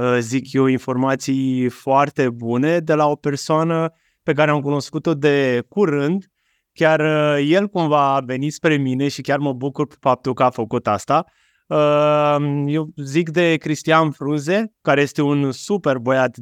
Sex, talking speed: male, 155 wpm